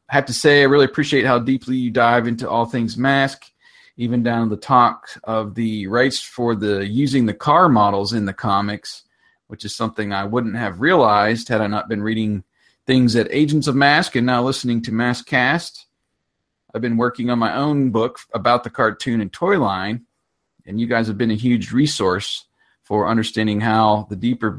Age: 40-59